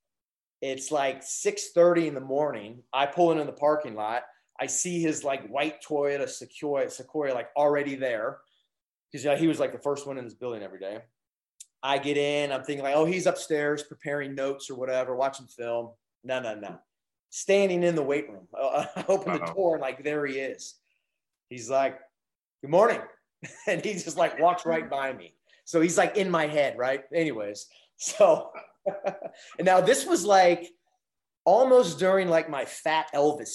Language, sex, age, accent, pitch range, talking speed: English, male, 30-49, American, 135-165 Hz, 180 wpm